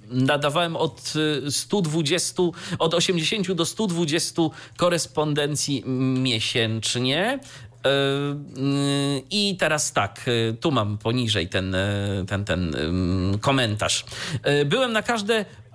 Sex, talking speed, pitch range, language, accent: male, 85 wpm, 120-155 Hz, Polish, native